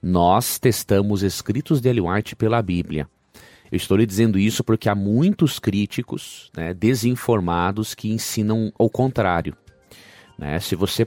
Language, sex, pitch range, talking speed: Portuguese, male, 90-120 Hz, 140 wpm